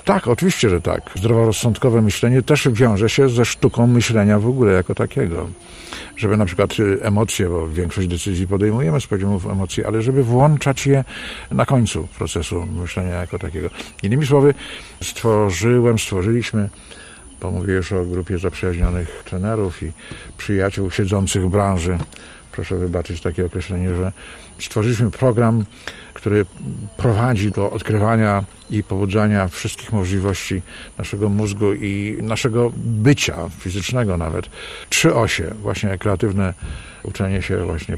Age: 50-69